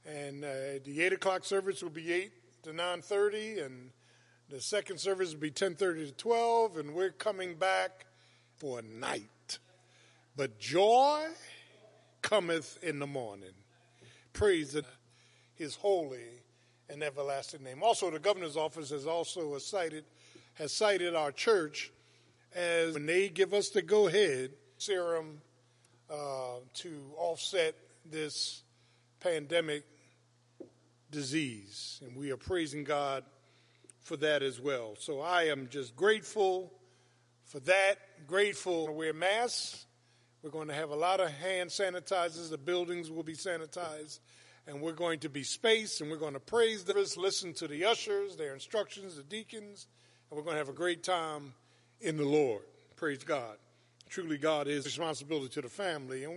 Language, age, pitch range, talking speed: English, 50-69, 130-185 Hz, 155 wpm